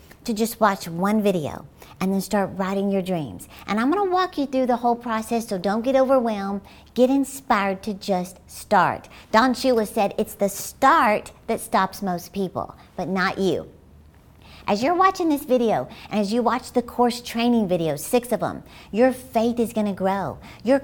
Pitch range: 190-245 Hz